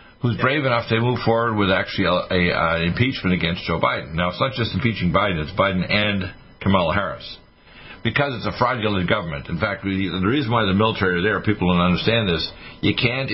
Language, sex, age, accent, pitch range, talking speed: English, male, 60-79, American, 90-120 Hz, 200 wpm